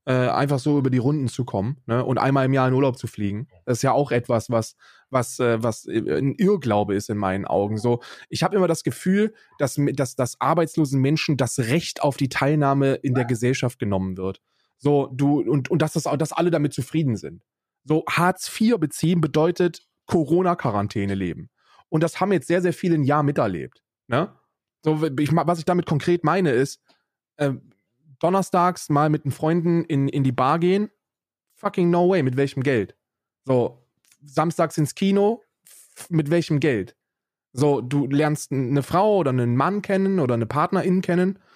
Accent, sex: German, male